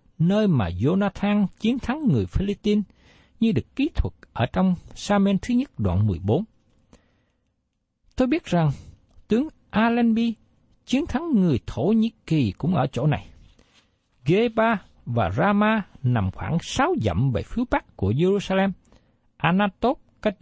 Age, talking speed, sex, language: 60-79, 140 wpm, male, Vietnamese